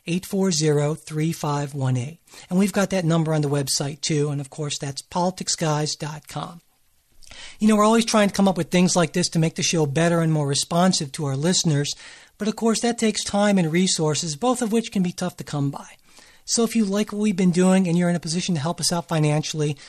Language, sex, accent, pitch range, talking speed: English, male, American, 155-205 Hz, 240 wpm